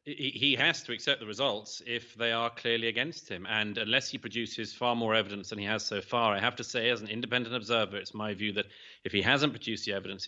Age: 30-49